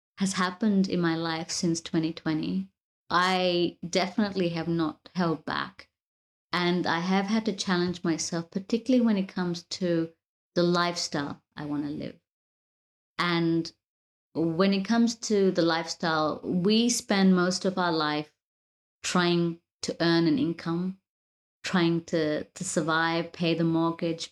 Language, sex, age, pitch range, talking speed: English, female, 30-49, 160-190 Hz, 140 wpm